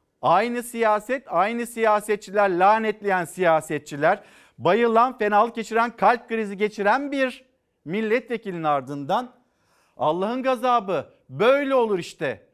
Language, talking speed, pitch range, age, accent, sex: Turkish, 95 wpm, 150-215 Hz, 50-69, native, male